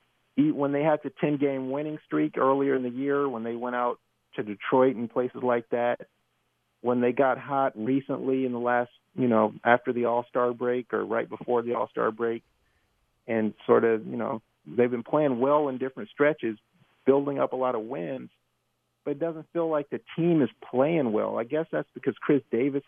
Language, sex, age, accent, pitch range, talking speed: English, male, 40-59, American, 110-135 Hz, 195 wpm